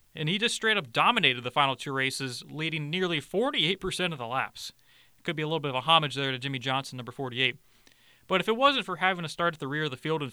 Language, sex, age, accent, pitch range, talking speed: English, male, 30-49, American, 135-165 Hz, 255 wpm